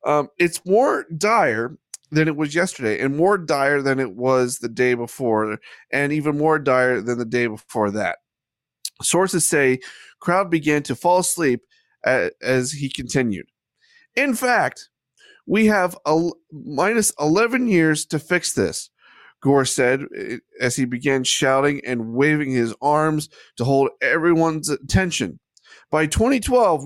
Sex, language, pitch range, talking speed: male, English, 130-180 Hz, 140 wpm